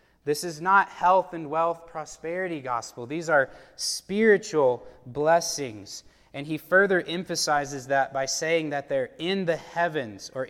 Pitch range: 140-175 Hz